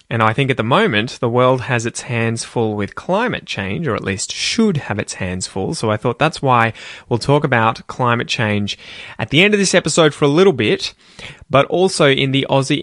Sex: male